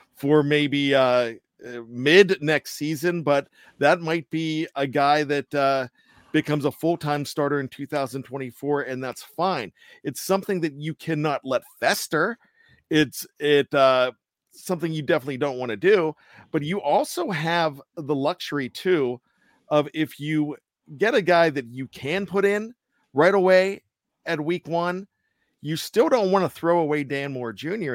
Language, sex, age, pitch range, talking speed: English, male, 40-59, 140-170 Hz, 155 wpm